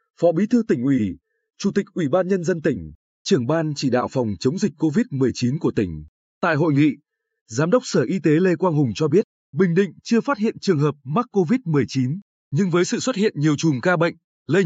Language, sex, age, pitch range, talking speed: Vietnamese, male, 20-39, 145-205 Hz, 220 wpm